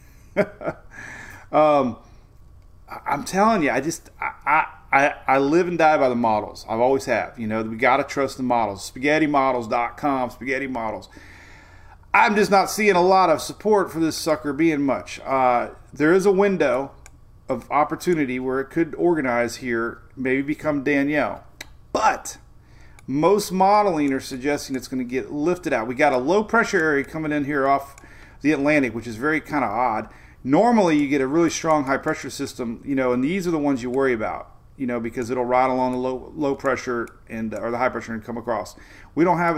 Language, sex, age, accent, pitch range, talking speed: English, male, 40-59, American, 120-150 Hz, 190 wpm